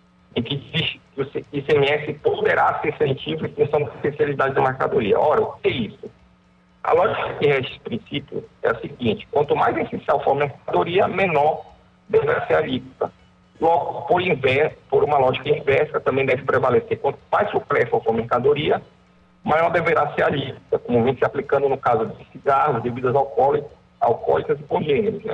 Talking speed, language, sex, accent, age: 180 wpm, Portuguese, male, Brazilian, 50-69